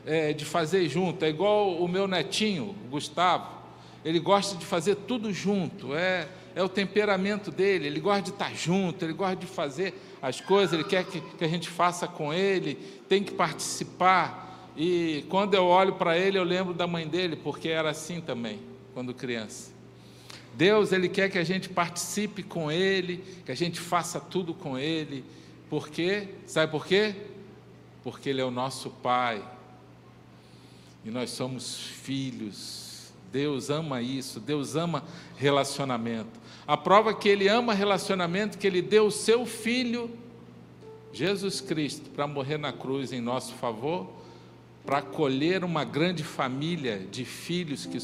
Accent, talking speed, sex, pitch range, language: Brazilian, 155 wpm, male, 135-190 Hz, Portuguese